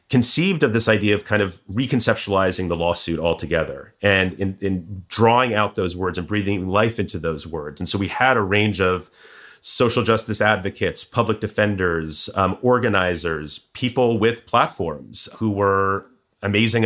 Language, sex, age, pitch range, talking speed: English, male, 30-49, 95-115 Hz, 155 wpm